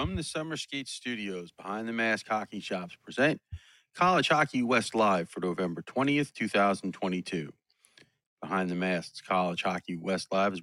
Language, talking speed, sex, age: English, 150 wpm, male, 40-59